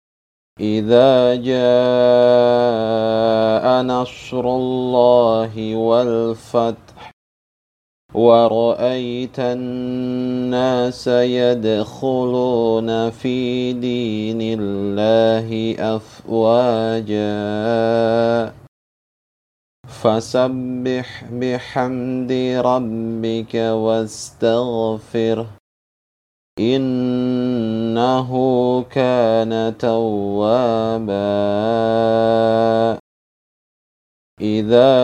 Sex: male